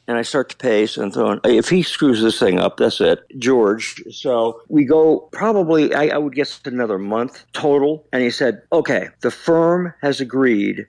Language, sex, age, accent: English, male, 50-69, American